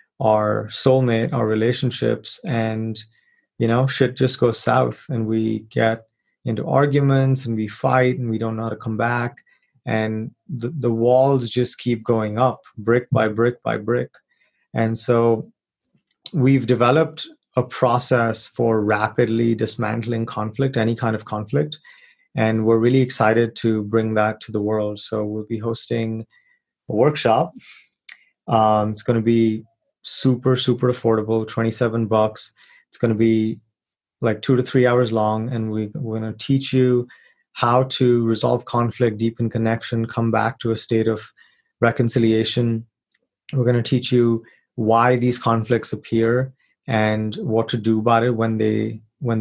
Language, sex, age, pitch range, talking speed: English, male, 30-49, 110-125 Hz, 155 wpm